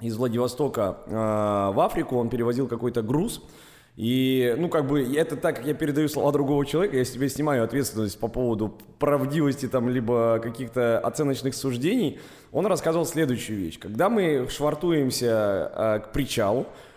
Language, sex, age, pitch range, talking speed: Russian, male, 20-39, 110-145 Hz, 150 wpm